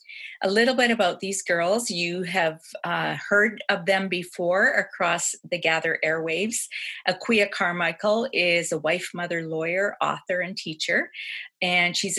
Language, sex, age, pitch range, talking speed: English, female, 40-59, 165-205 Hz, 145 wpm